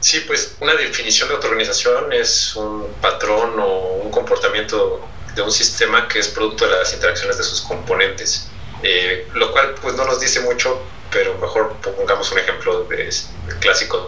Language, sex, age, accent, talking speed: Spanish, male, 30-49, Mexican, 175 wpm